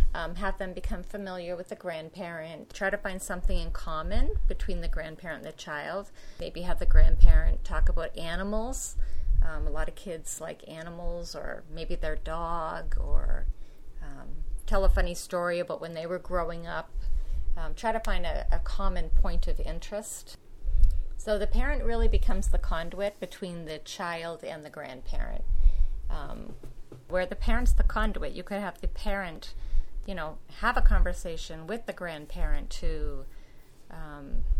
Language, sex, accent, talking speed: English, female, American, 165 wpm